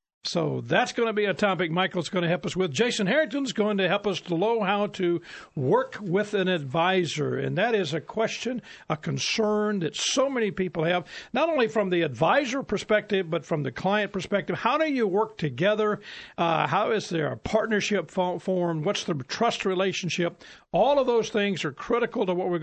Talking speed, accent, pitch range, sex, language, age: 200 wpm, American, 165-215 Hz, male, English, 50-69